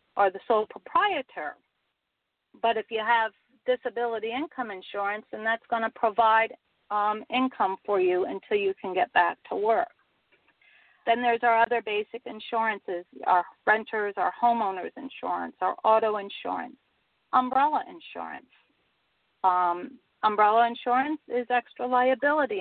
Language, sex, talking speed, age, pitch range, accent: English, female, 130 wpm, 40-59, 215-250 Hz, American